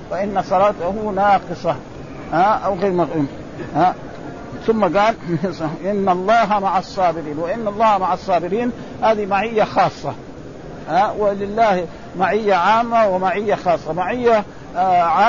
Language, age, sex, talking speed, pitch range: Arabic, 50-69, male, 125 wpm, 170-205 Hz